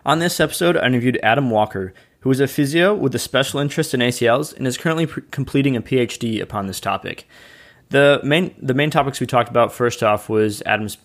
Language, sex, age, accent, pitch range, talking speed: English, male, 20-39, American, 110-130 Hz, 210 wpm